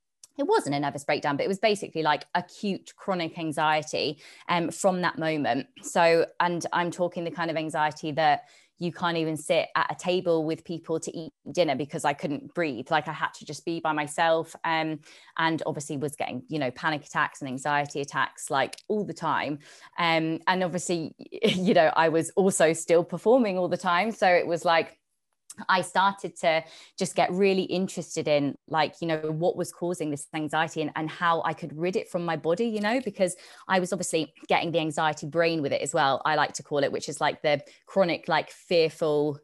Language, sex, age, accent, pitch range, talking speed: English, female, 20-39, British, 155-180 Hz, 205 wpm